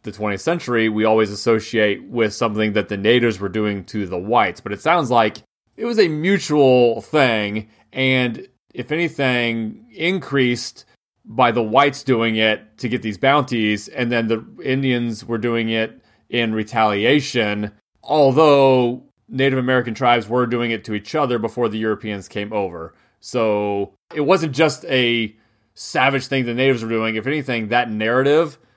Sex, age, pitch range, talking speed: male, 30-49, 110-130 Hz, 160 wpm